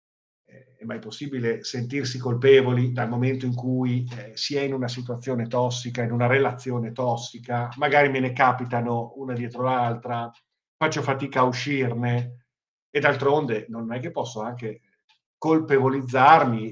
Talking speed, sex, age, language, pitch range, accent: 140 wpm, male, 50-69, Italian, 115-140 Hz, native